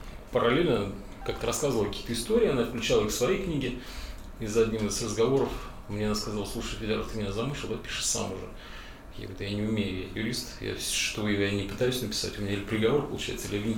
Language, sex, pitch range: Russian, male, 100-115 Hz